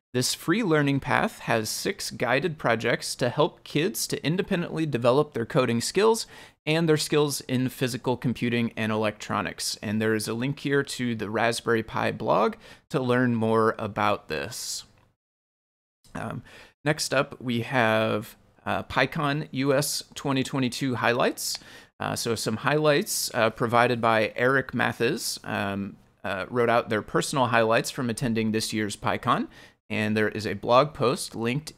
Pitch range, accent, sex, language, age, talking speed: 110-140 Hz, American, male, English, 30-49, 150 wpm